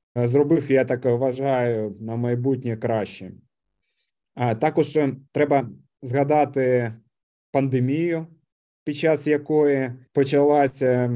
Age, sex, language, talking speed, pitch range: 20-39, male, Ukrainian, 80 wpm, 125-145 Hz